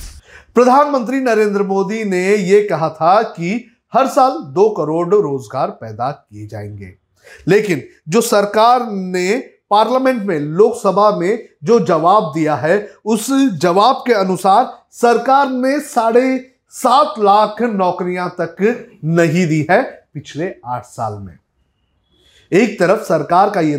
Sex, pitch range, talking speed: male, 155-220 Hz, 130 wpm